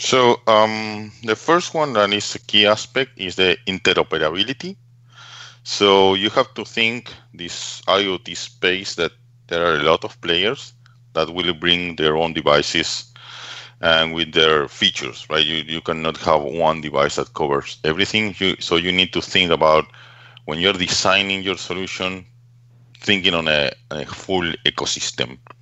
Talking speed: 150 wpm